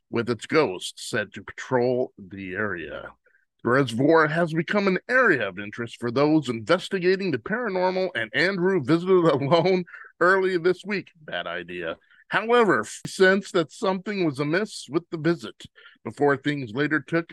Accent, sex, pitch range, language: American, male, 130-190 Hz, English